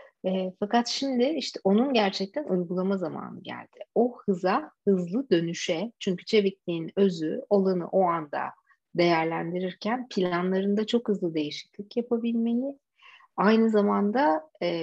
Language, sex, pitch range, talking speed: Turkish, female, 180-230 Hz, 115 wpm